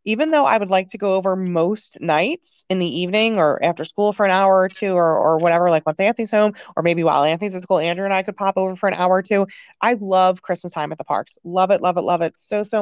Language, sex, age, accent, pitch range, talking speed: English, female, 20-39, American, 170-215 Hz, 280 wpm